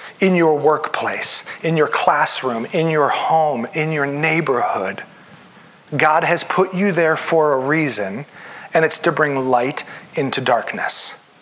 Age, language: 40-59, English